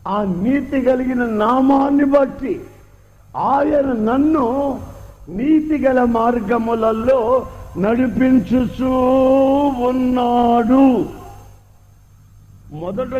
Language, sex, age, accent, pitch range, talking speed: Telugu, male, 50-69, native, 180-275 Hz, 60 wpm